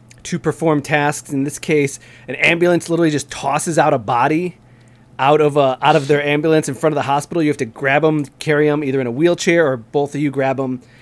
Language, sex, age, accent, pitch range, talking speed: English, male, 30-49, American, 125-155 Hz, 235 wpm